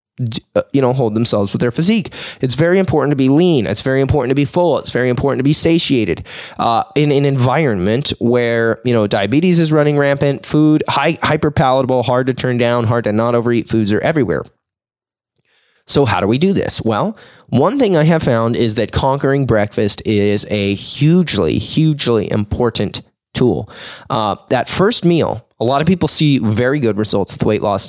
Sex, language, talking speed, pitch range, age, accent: male, English, 190 wpm, 115-145 Hz, 20-39, American